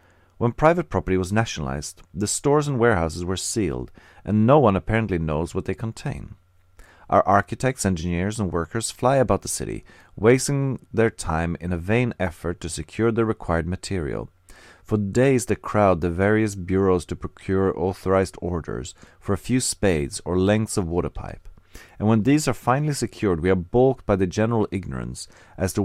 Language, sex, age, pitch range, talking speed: English, male, 40-59, 90-115 Hz, 175 wpm